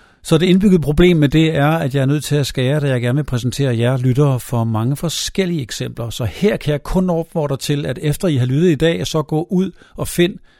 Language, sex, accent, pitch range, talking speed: Danish, male, native, 125-155 Hz, 250 wpm